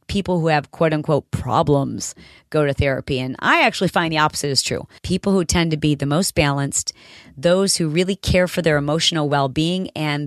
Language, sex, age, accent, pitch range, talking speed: English, female, 40-59, American, 145-190 Hz, 195 wpm